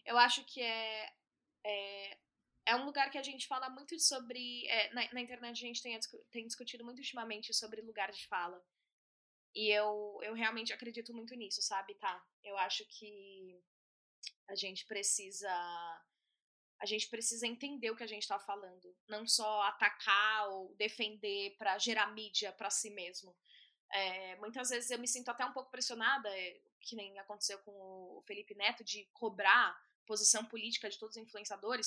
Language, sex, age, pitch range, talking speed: Portuguese, female, 10-29, 205-250 Hz, 170 wpm